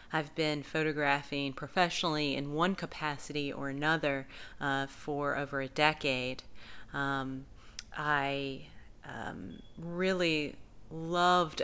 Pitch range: 140-155 Hz